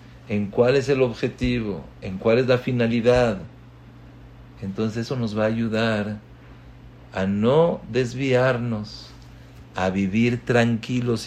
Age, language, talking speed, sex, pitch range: 50-69, English, 115 wpm, male, 100-125 Hz